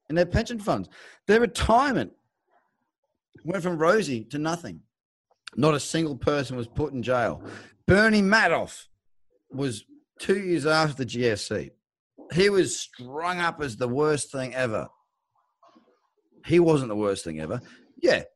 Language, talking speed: English, 140 wpm